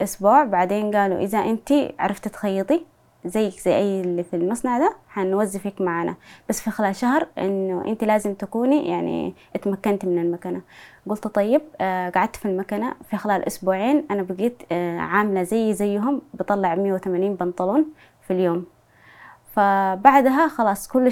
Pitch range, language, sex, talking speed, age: 190-235 Hz, English, female, 140 wpm, 20-39